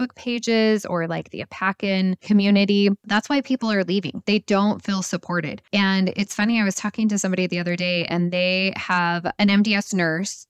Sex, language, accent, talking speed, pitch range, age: female, English, American, 185 wpm, 175-215 Hz, 20-39